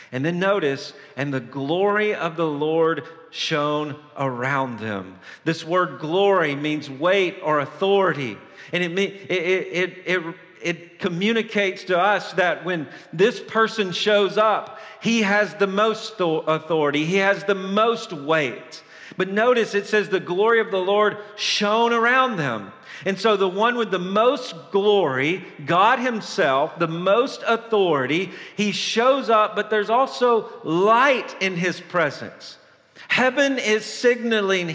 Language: English